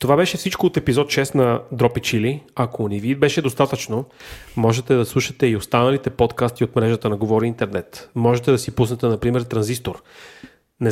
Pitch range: 115-135 Hz